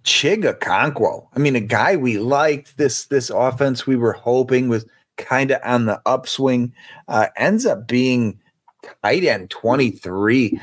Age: 30-49